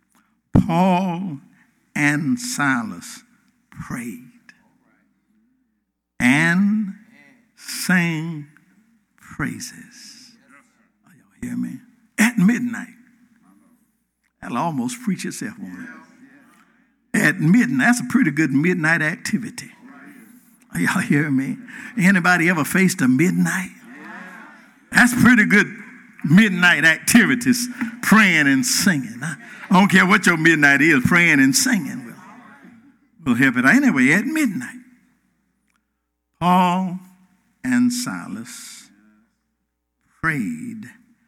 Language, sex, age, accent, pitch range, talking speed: English, male, 60-79, American, 185-245 Hz, 95 wpm